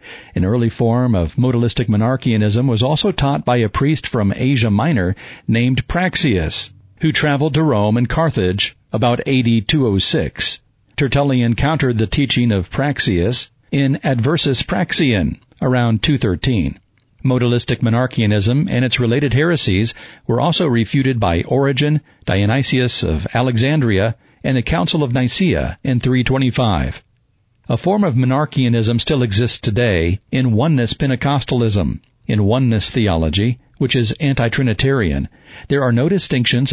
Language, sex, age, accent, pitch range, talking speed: English, male, 50-69, American, 110-135 Hz, 125 wpm